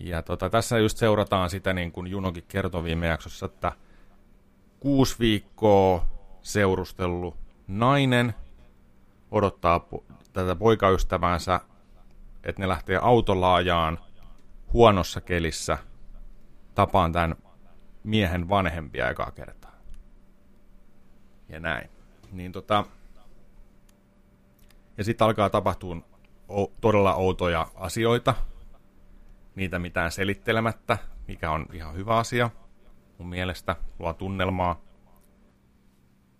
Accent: native